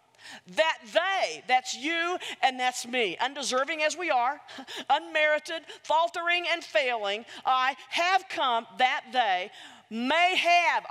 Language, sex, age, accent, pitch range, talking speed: English, female, 40-59, American, 275-370 Hz, 120 wpm